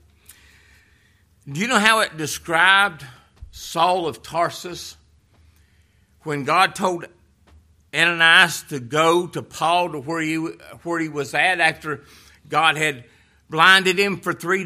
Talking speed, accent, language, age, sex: 125 wpm, American, English, 50-69, male